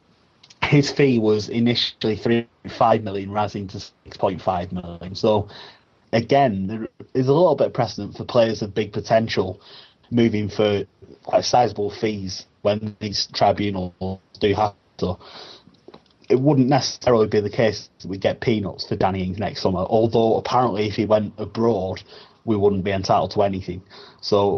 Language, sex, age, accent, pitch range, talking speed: English, male, 30-49, British, 100-115 Hz, 150 wpm